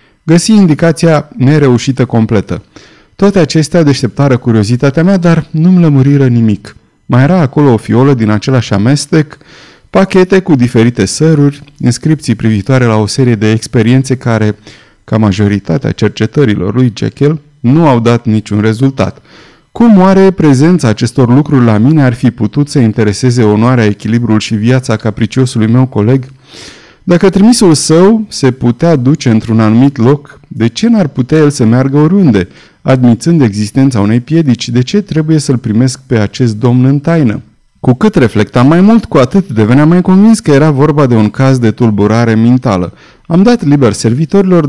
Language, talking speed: Romanian, 155 wpm